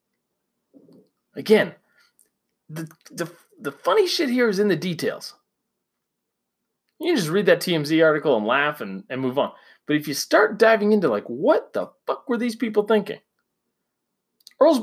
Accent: American